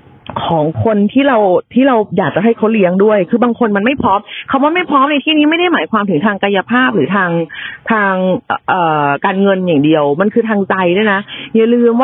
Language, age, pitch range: Thai, 30-49, 175-250 Hz